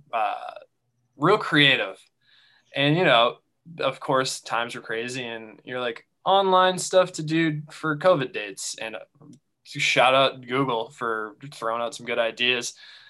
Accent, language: American, English